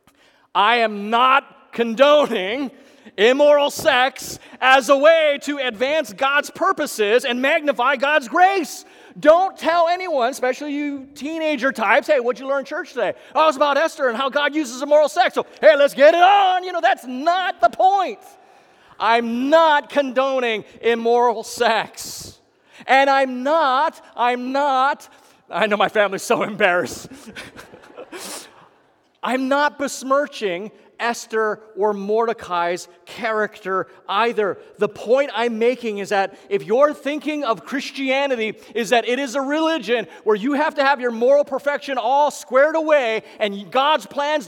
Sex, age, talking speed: male, 30-49, 145 wpm